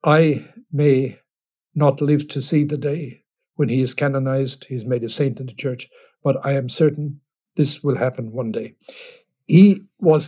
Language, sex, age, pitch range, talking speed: English, male, 60-79, 130-155 Hz, 175 wpm